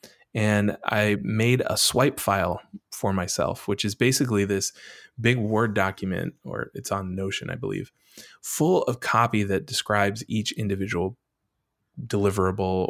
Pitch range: 100-110 Hz